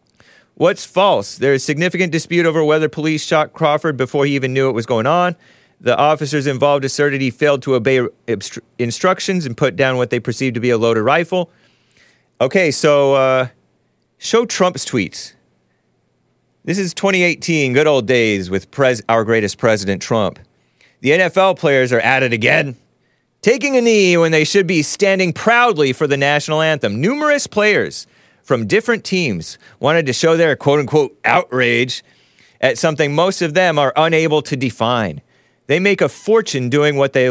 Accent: American